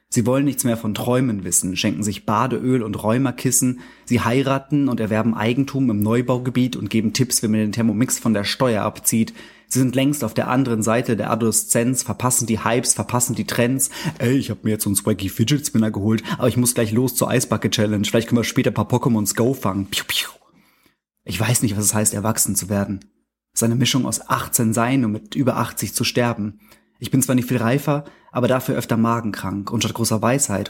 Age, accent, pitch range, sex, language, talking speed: 30-49, German, 110-125 Hz, male, German, 210 wpm